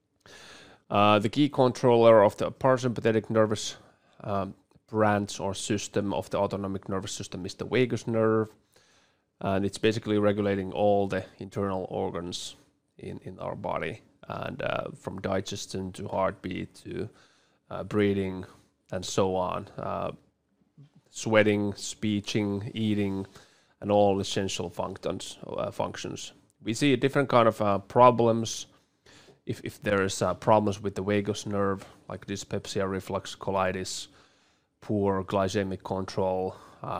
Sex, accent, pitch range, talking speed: male, Finnish, 95-110 Hz, 130 wpm